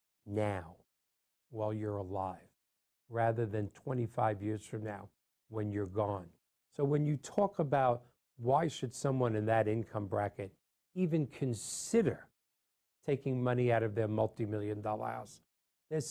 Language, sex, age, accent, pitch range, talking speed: English, male, 50-69, American, 110-140 Hz, 135 wpm